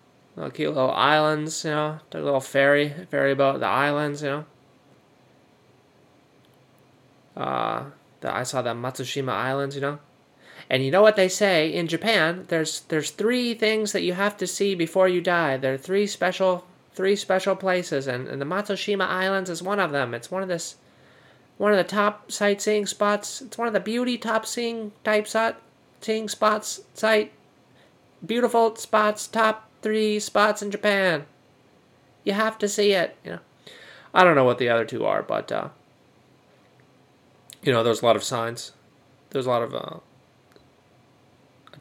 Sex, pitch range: male, 135-200 Hz